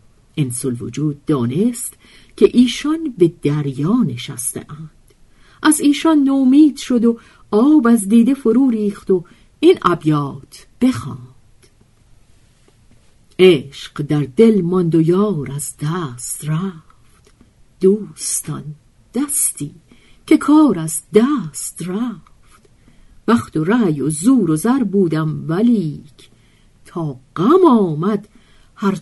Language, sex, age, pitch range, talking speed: Persian, female, 50-69, 140-225 Hz, 105 wpm